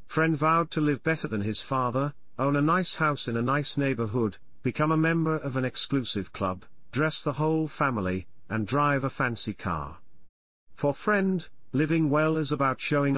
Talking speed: 180 wpm